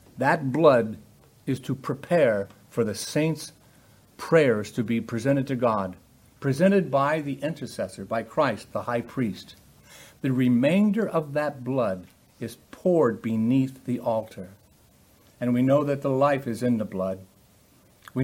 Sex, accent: male, American